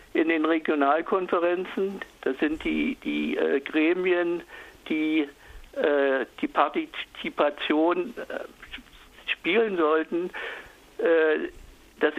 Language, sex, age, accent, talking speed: German, male, 60-79, German, 85 wpm